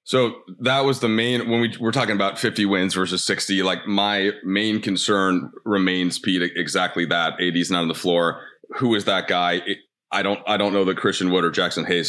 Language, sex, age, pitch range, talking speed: English, male, 30-49, 90-110 Hz, 210 wpm